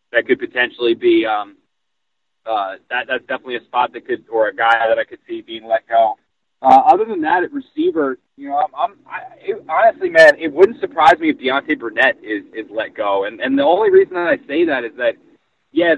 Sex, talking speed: male, 225 wpm